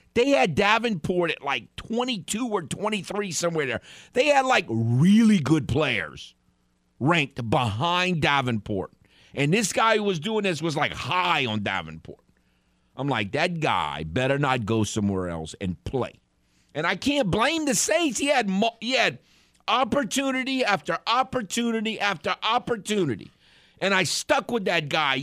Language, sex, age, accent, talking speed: English, male, 50-69, American, 145 wpm